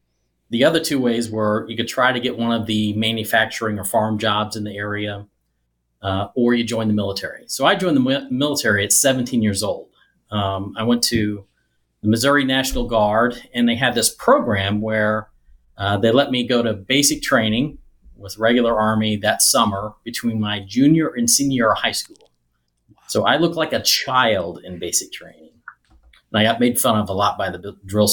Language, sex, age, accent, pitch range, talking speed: English, male, 40-59, American, 100-120 Hz, 190 wpm